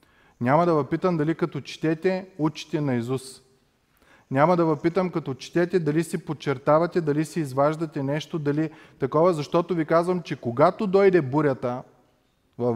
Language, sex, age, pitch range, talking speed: Bulgarian, male, 30-49, 145-185 Hz, 145 wpm